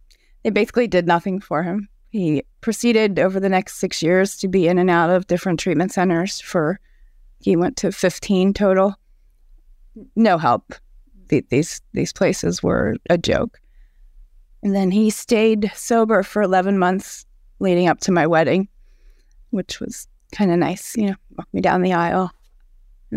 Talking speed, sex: 160 wpm, female